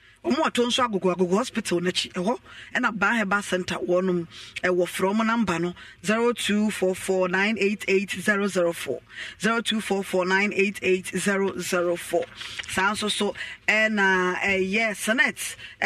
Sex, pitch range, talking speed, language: female, 185-235 Hz, 180 wpm, English